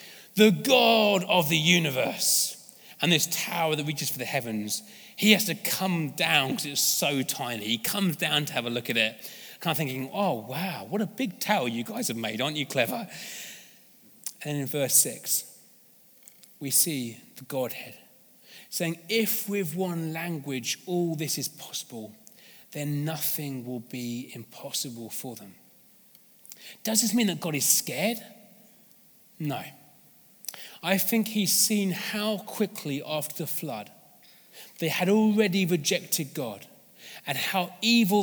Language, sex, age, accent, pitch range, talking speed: English, male, 30-49, British, 140-200 Hz, 150 wpm